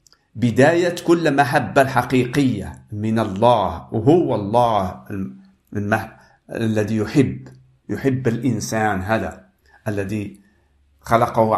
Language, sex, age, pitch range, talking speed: Arabic, male, 50-69, 100-130 Hz, 85 wpm